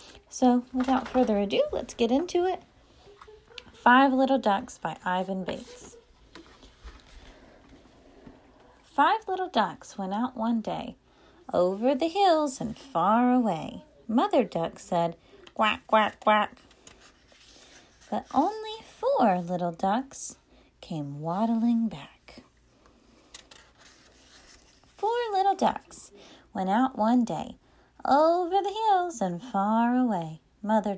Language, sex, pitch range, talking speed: English, female, 190-285 Hz, 105 wpm